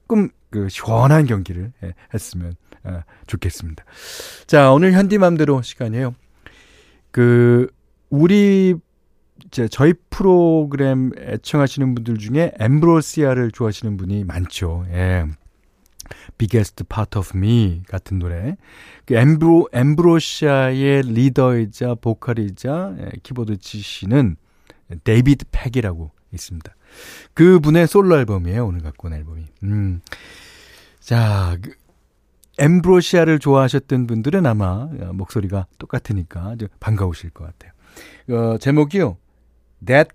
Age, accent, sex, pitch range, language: 40-59, native, male, 95-140 Hz, Korean